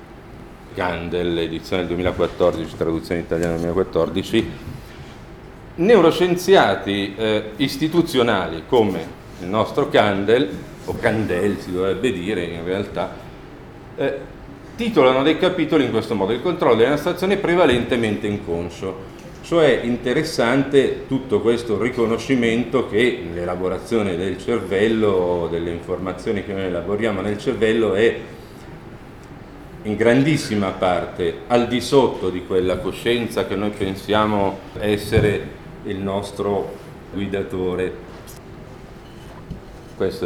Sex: male